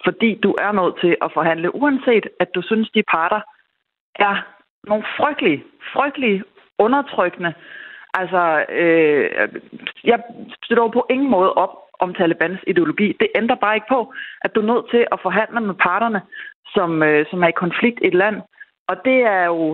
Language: Danish